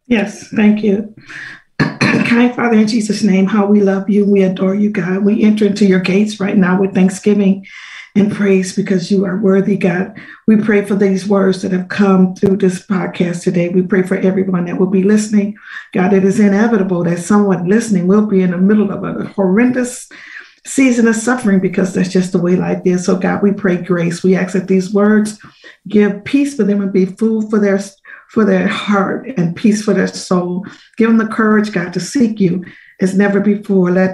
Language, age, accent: English, 50-69, American